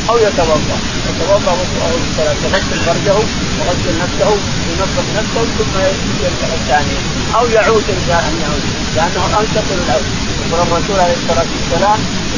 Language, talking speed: Arabic, 105 wpm